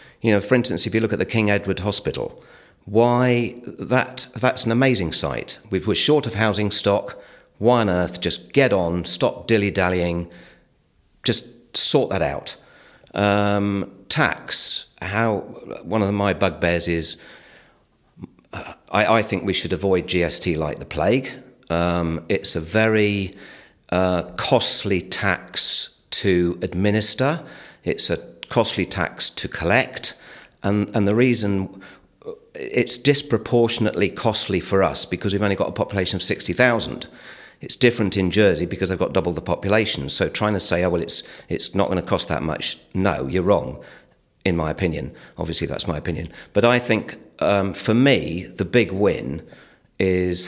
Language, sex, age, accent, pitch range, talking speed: English, male, 50-69, British, 90-110 Hz, 155 wpm